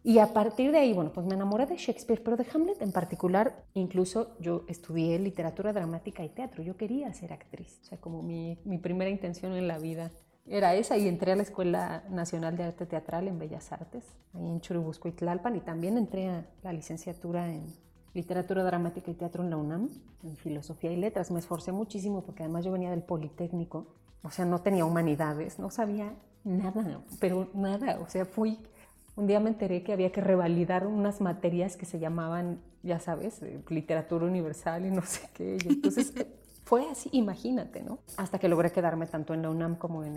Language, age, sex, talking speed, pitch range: Spanish, 30-49, female, 200 wpm, 170-205 Hz